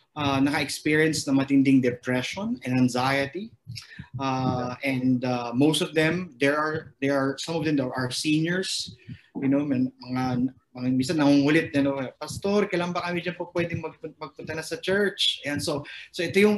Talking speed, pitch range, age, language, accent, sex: 165 wpm, 130-155 Hz, 20-39, Filipino, native, male